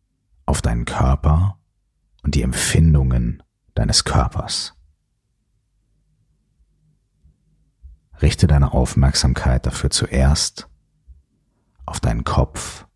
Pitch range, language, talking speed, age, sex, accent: 65-105 Hz, German, 75 wpm, 40-59, male, German